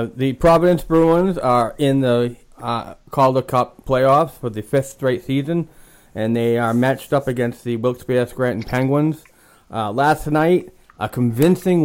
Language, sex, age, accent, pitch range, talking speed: English, male, 30-49, American, 115-145 Hz, 150 wpm